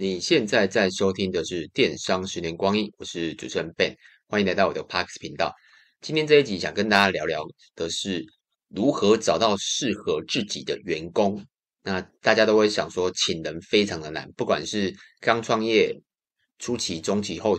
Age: 30-49